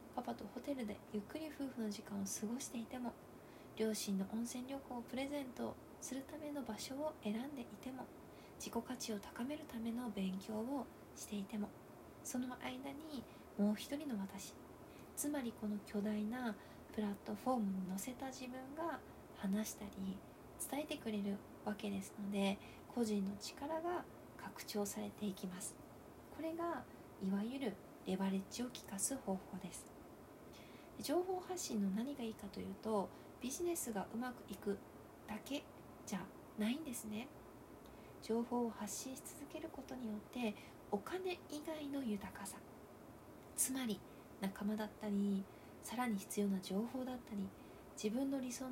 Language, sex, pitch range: Japanese, female, 205-280 Hz